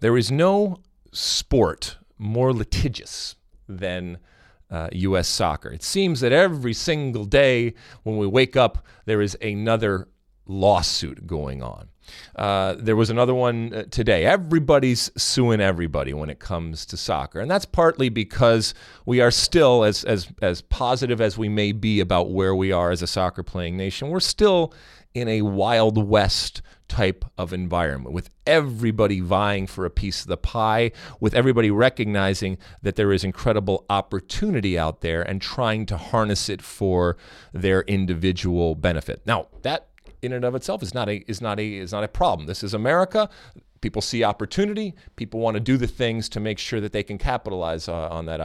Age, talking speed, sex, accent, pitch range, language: 40-59, 170 wpm, male, American, 90-120 Hz, English